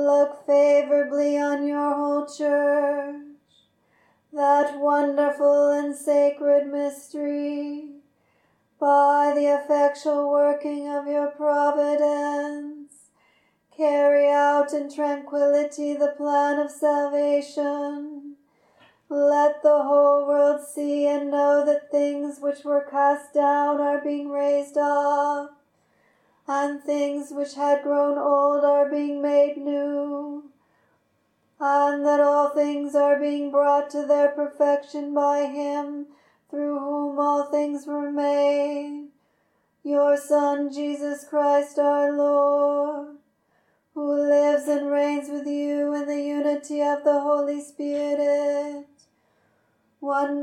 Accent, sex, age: American, female, 40-59